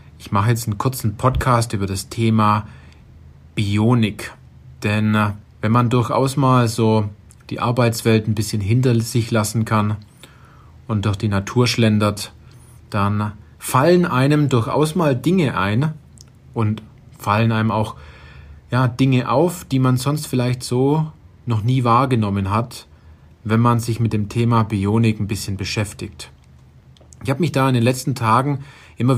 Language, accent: German, German